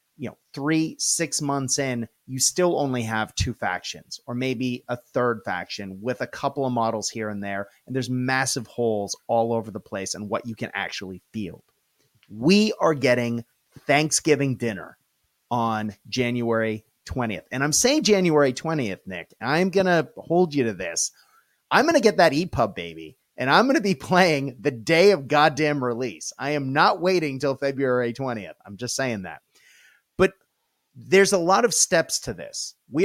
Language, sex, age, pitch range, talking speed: English, male, 30-49, 115-155 Hz, 175 wpm